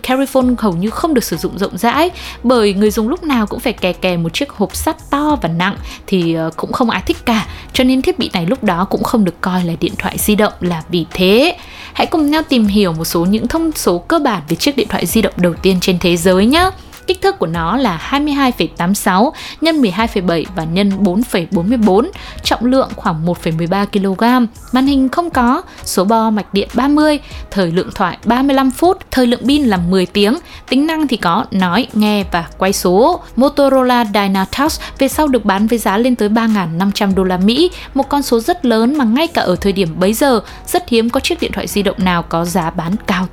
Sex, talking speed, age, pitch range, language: female, 220 wpm, 20-39, 190-260 Hz, Vietnamese